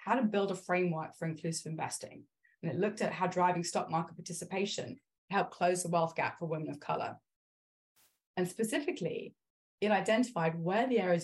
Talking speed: 175 wpm